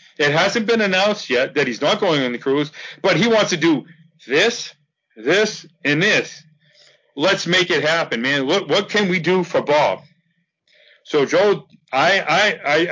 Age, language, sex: 40-59, English, male